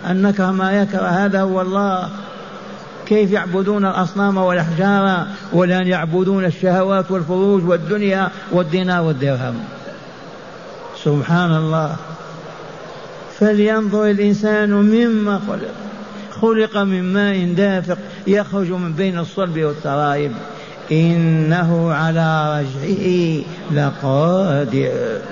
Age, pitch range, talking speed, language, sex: 50-69, 160-195 Hz, 90 wpm, Arabic, male